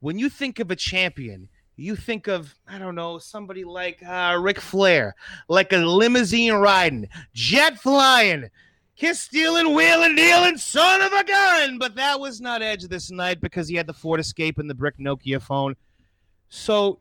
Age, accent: 30-49, American